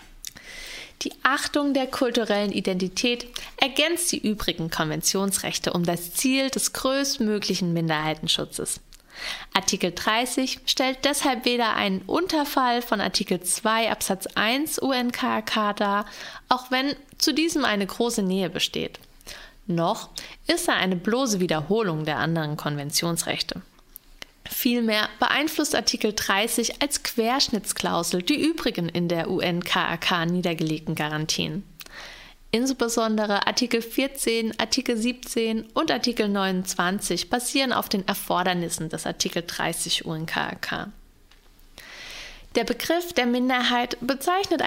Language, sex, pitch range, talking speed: German, female, 180-255 Hz, 105 wpm